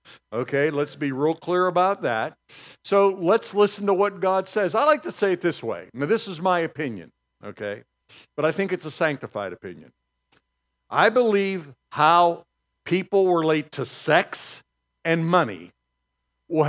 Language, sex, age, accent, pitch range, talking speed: English, male, 60-79, American, 135-195 Hz, 160 wpm